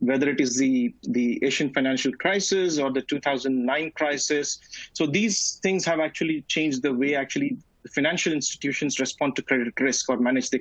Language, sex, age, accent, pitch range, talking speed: English, male, 30-49, Indian, 130-185 Hz, 170 wpm